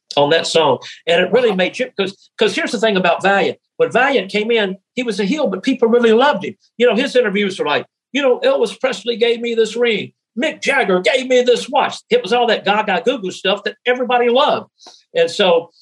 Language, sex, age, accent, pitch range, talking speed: English, male, 60-79, American, 190-300 Hz, 230 wpm